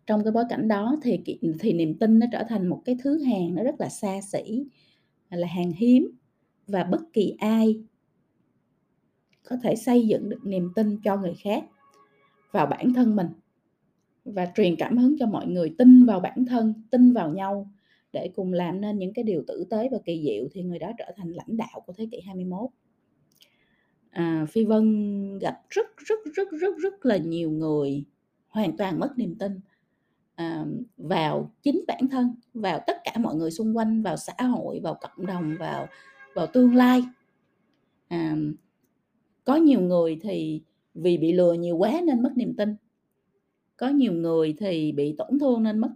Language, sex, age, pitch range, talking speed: Vietnamese, female, 20-39, 175-245 Hz, 185 wpm